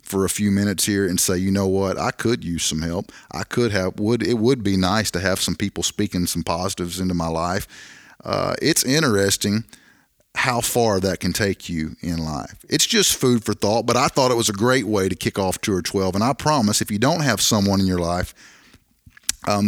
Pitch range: 95-115 Hz